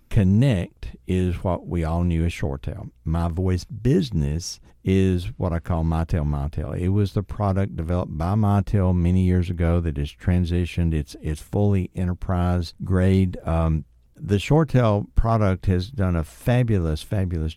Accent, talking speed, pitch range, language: American, 145 wpm, 80-95 Hz, English